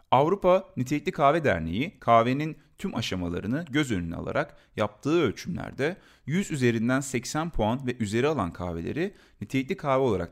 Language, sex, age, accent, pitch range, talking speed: Turkish, male, 40-59, native, 100-145 Hz, 135 wpm